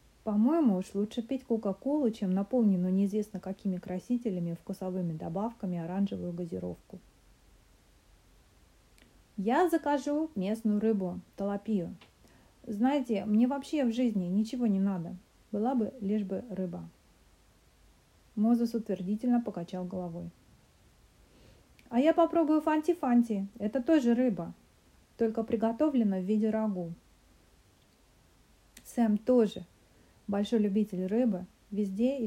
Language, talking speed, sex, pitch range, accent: Russian, 100 wpm, female, 185-230 Hz, native